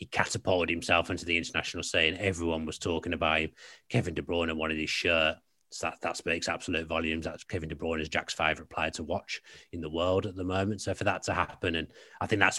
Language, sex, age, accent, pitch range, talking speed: English, male, 30-49, British, 85-100 Hz, 235 wpm